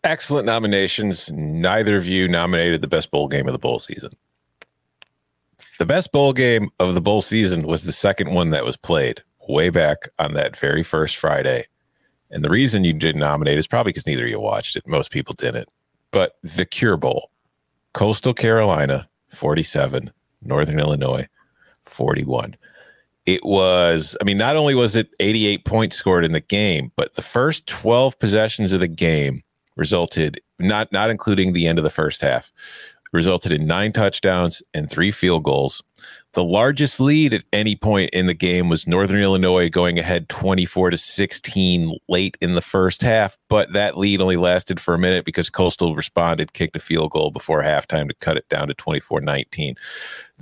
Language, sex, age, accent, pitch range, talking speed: English, male, 40-59, American, 80-105 Hz, 175 wpm